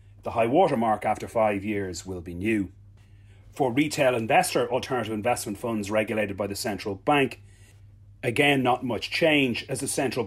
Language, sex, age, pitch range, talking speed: English, male, 30-49, 100-120 Hz, 165 wpm